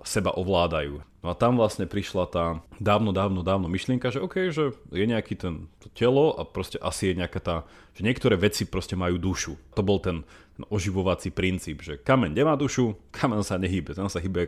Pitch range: 90-115 Hz